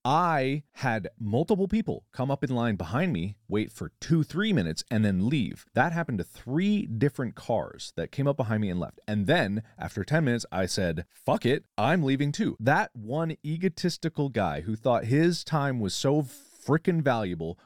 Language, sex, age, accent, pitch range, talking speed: English, male, 30-49, American, 100-140 Hz, 185 wpm